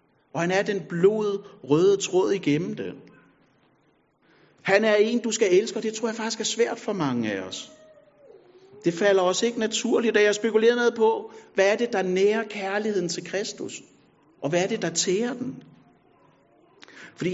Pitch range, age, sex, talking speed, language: 190-230 Hz, 60-79, male, 180 wpm, Danish